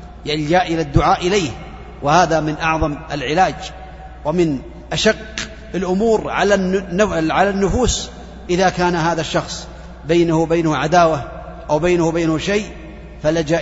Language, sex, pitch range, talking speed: Arabic, male, 150-190 Hz, 115 wpm